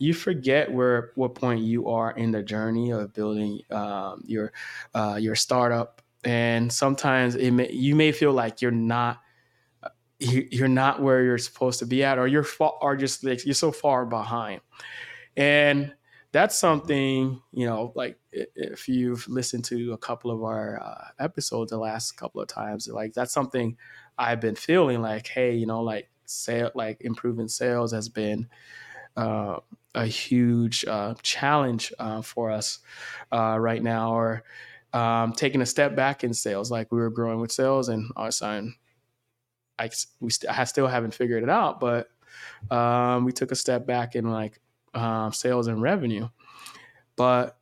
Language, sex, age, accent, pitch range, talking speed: English, male, 20-39, American, 115-130 Hz, 165 wpm